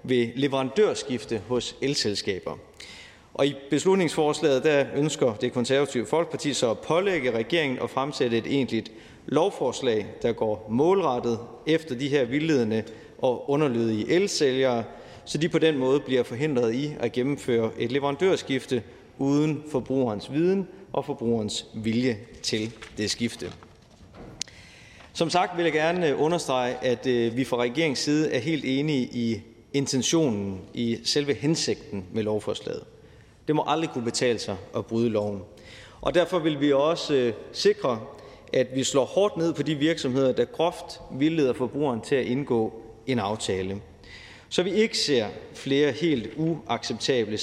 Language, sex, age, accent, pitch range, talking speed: Danish, male, 30-49, native, 115-150 Hz, 140 wpm